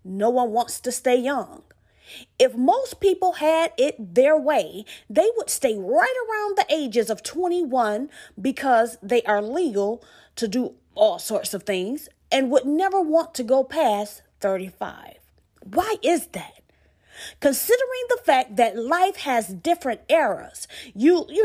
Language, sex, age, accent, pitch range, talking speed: English, female, 30-49, American, 230-345 Hz, 150 wpm